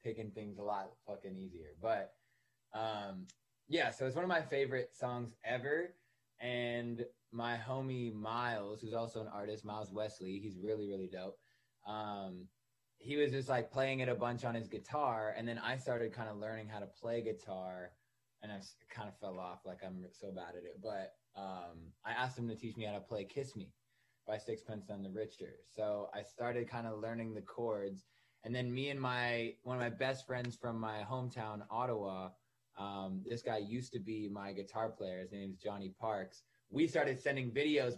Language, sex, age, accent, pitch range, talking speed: English, male, 20-39, American, 105-125 Hz, 195 wpm